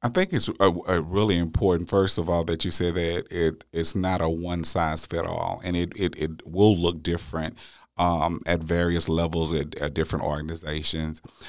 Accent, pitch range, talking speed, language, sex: American, 85-95 Hz, 195 wpm, English, male